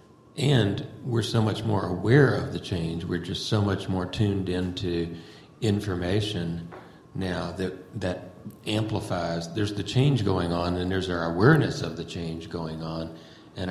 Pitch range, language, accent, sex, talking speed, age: 85-105 Hz, English, American, male, 160 wpm, 40-59